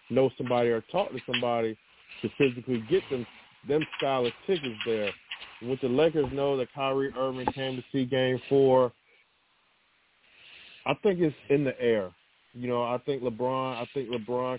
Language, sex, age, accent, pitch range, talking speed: English, male, 40-59, American, 120-140 Hz, 170 wpm